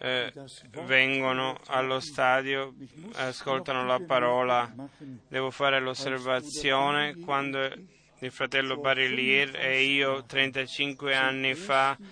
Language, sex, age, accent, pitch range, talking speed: Italian, male, 20-39, native, 130-145 Hz, 95 wpm